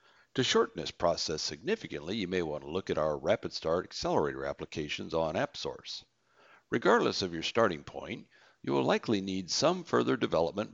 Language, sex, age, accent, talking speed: English, male, 60-79, American, 170 wpm